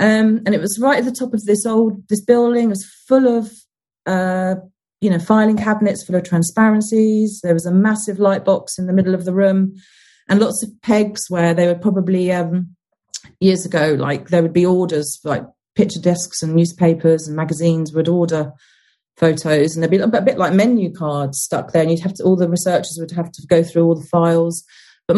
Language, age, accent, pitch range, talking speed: English, 30-49, British, 170-210 Hz, 210 wpm